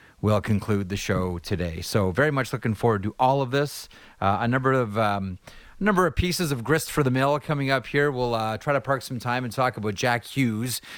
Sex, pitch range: male, 100-125 Hz